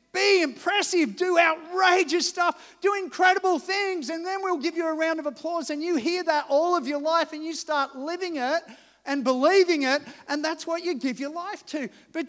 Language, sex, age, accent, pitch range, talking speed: English, male, 40-59, Australian, 250-320 Hz, 205 wpm